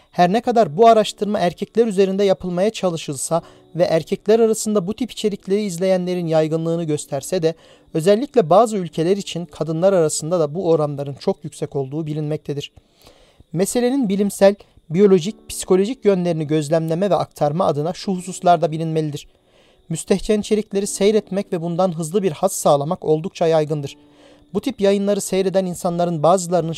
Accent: native